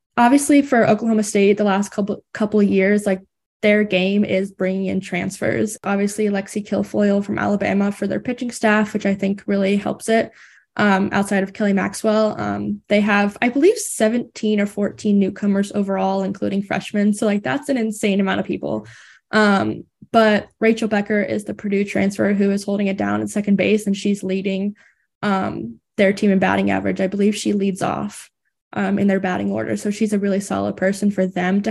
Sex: female